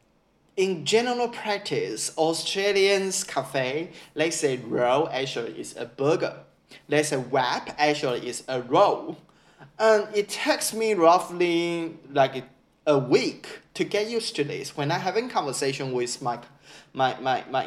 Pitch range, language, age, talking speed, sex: 140-210 Hz, English, 10-29, 140 wpm, male